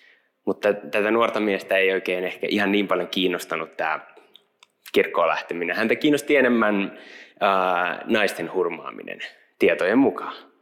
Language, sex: Finnish, male